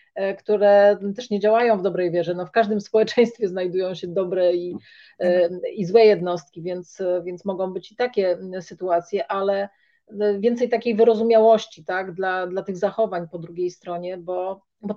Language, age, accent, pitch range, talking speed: Polish, 30-49, native, 185-220 Hz, 155 wpm